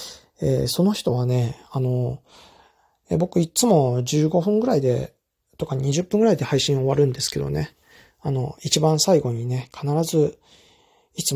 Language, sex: Japanese, male